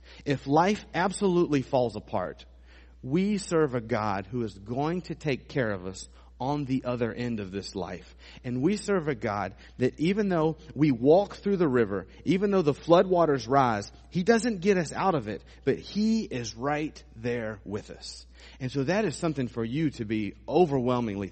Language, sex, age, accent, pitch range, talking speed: English, male, 40-59, American, 105-155 Hz, 185 wpm